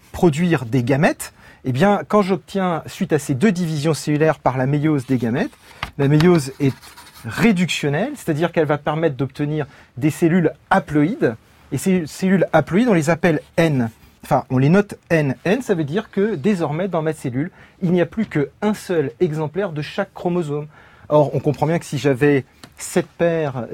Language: French